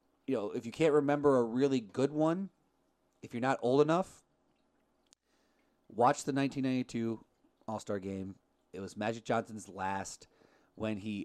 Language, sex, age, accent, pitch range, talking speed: English, male, 30-49, American, 105-135 Hz, 145 wpm